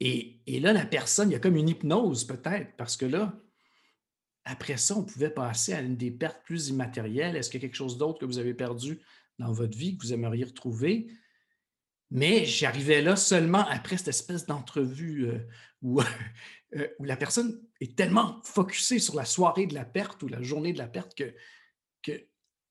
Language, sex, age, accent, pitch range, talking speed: French, male, 50-69, Canadian, 130-180 Hz, 195 wpm